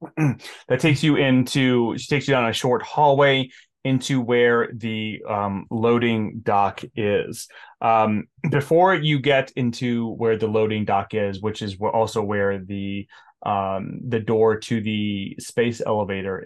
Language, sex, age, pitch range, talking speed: English, male, 30-49, 105-135 Hz, 145 wpm